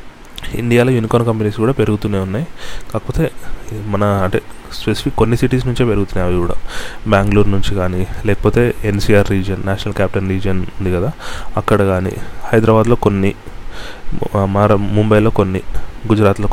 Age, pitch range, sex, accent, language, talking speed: 20-39, 100-120 Hz, male, native, Telugu, 125 wpm